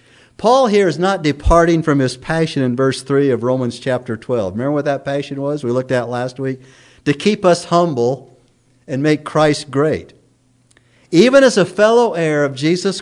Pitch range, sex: 120-145 Hz, male